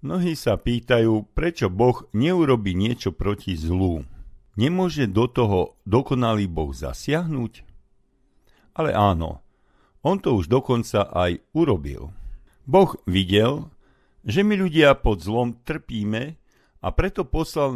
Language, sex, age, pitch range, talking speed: Slovak, male, 50-69, 90-130 Hz, 115 wpm